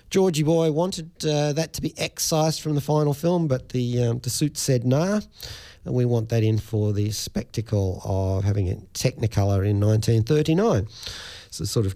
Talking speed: 185 wpm